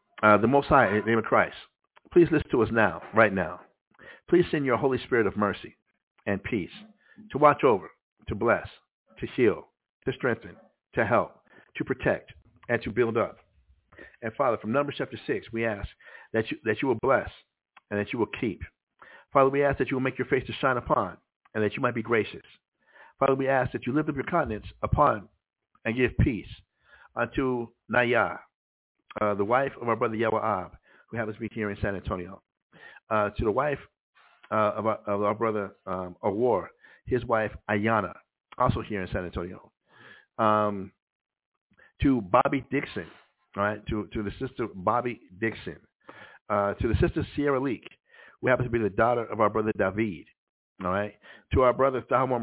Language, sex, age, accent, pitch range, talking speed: English, male, 60-79, American, 105-135 Hz, 185 wpm